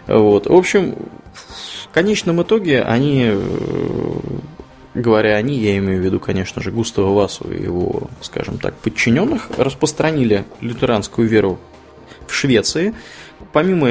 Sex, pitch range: male, 105-130 Hz